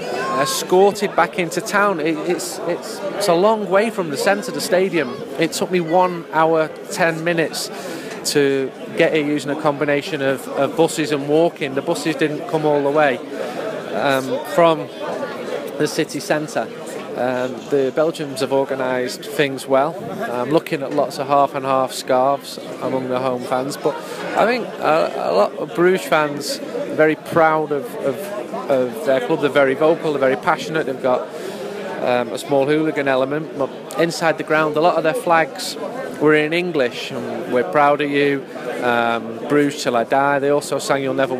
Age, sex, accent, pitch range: 30-49, male, British, 135-160 Hz